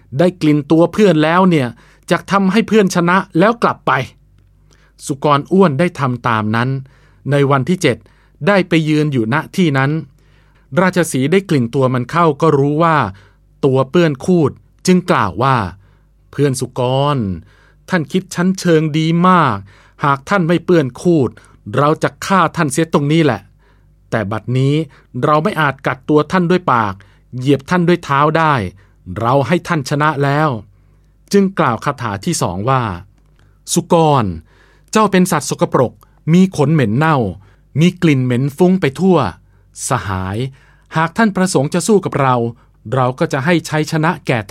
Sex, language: male, Thai